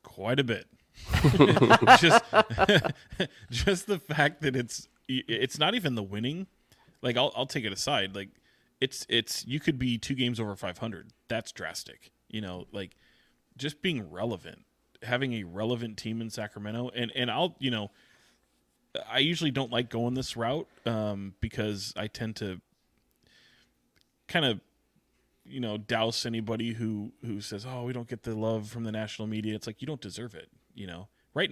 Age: 20-39